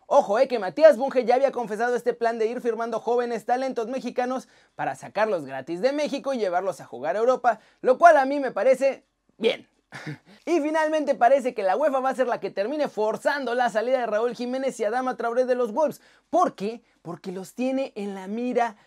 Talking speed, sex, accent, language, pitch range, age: 215 wpm, male, Mexican, Spanish, 195-265 Hz, 30-49